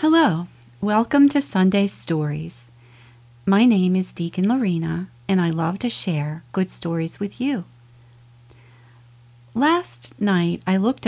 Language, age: English, 40-59